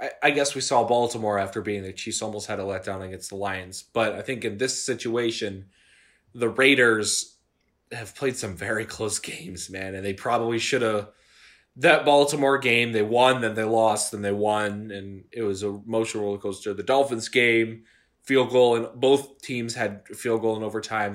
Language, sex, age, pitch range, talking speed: English, male, 20-39, 100-125 Hz, 195 wpm